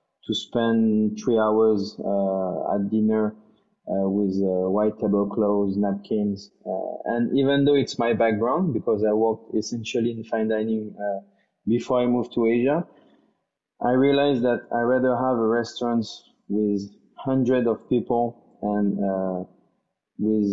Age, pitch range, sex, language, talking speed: 20-39, 105-120 Hz, male, English, 140 wpm